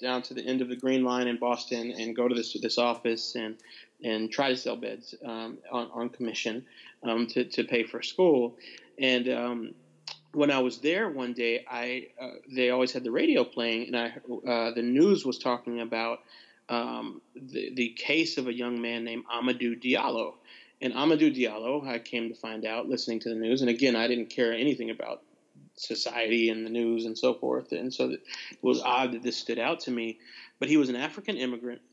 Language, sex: English, male